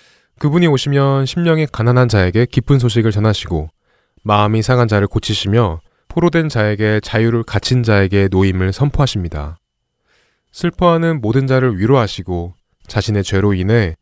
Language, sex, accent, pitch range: Korean, male, native, 95-130 Hz